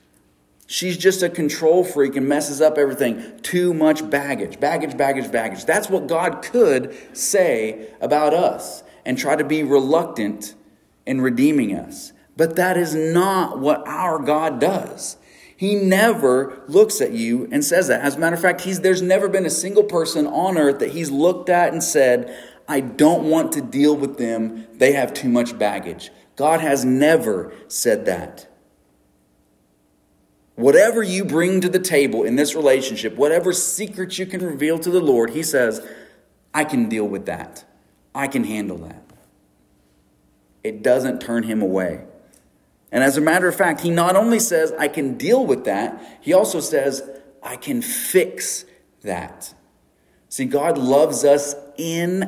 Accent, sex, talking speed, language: American, male, 165 wpm, English